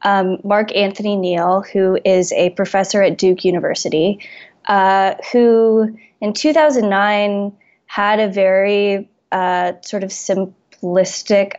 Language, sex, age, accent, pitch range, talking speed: English, female, 20-39, American, 185-215 Hz, 115 wpm